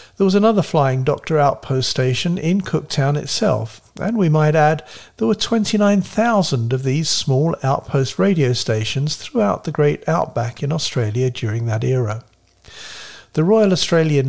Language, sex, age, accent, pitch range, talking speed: English, male, 50-69, British, 115-160 Hz, 145 wpm